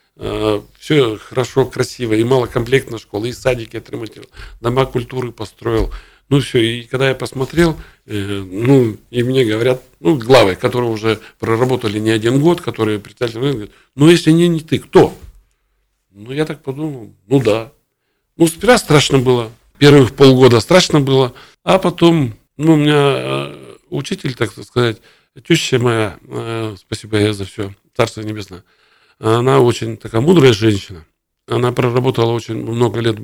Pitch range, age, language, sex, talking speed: 115-145 Hz, 50-69, Russian, male, 150 wpm